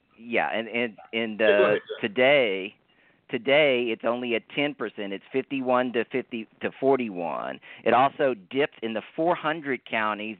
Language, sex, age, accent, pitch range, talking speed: English, male, 40-59, American, 110-130 Hz, 160 wpm